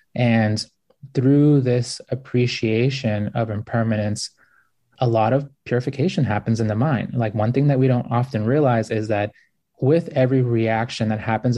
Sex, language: male, English